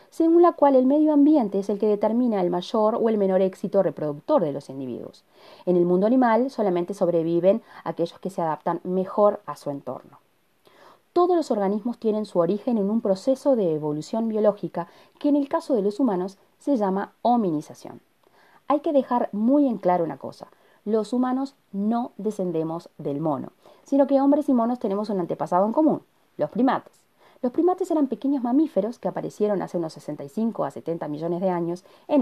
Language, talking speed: Spanish, 185 wpm